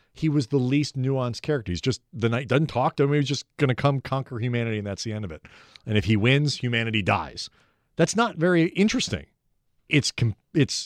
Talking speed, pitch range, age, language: 215 wpm, 115-155 Hz, 40-59, English